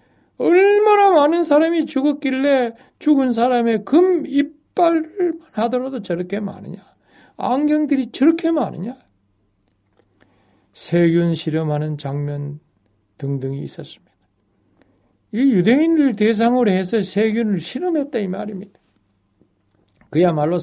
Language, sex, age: Korean, male, 60-79